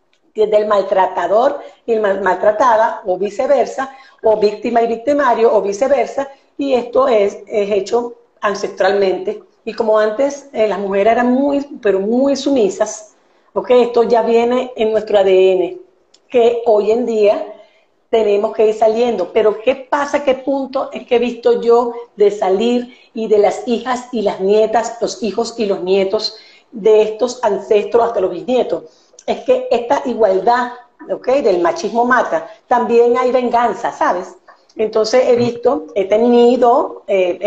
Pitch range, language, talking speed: 210-250 Hz, Spanish, 145 wpm